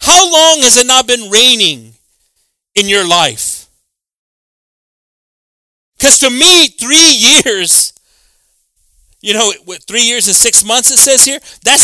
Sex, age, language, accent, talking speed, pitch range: male, 40-59, English, American, 130 wpm, 160-270 Hz